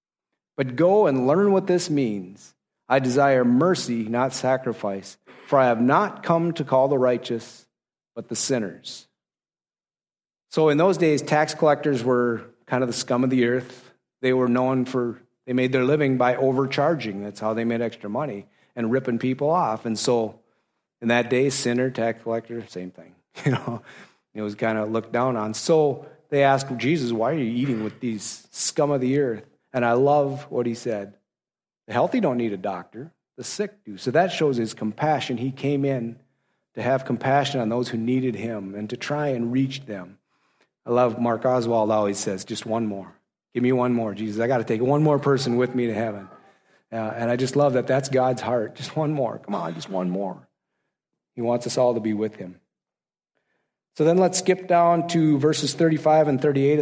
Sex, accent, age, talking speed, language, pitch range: male, American, 30-49, 200 wpm, English, 115-145 Hz